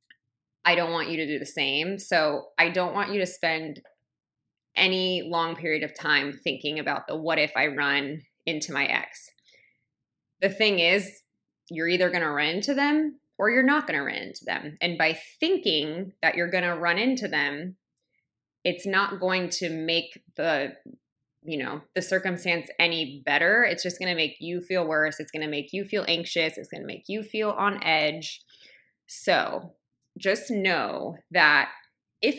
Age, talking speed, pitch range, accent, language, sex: 20-39, 170 wpm, 155-195 Hz, American, English, female